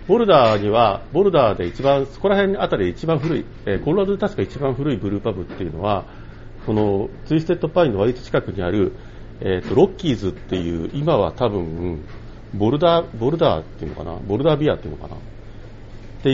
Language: Japanese